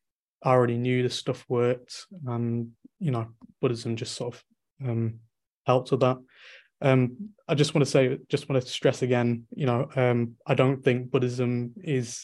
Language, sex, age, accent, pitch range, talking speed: English, male, 20-39, British, 120-135 Hz, 175 wpm